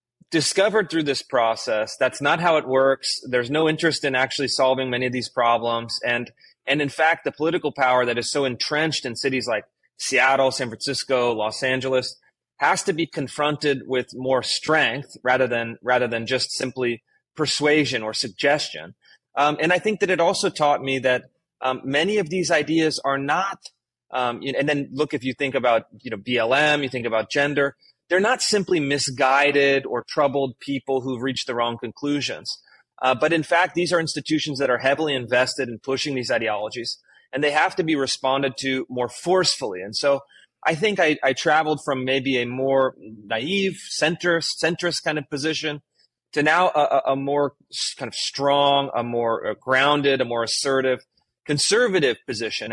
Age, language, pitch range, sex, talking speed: 30-49, English, 125-150 Hz, male, 175 wpm